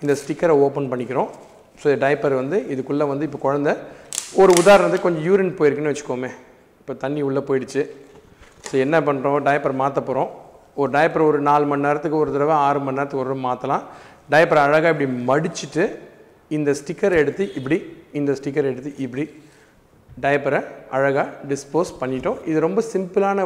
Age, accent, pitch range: 40-59, native, 140-180 Hz